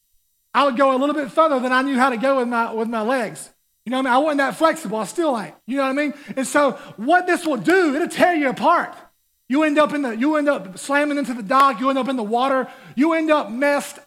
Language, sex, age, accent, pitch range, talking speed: English, male, 30-49, American, 245-310 Hz, 285 wpm